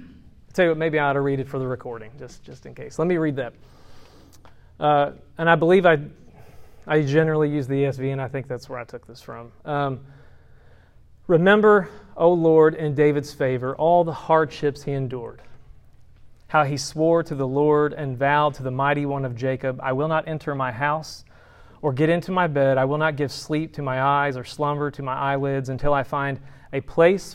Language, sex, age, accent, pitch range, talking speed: English, male, 30-49, American, 130-160 Hz, 200 wpm